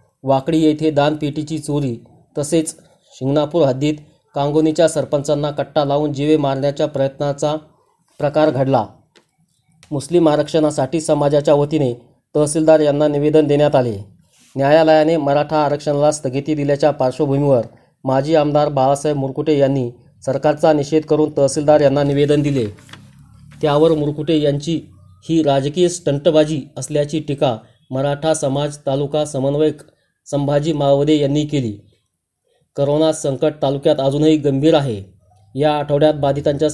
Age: 30-49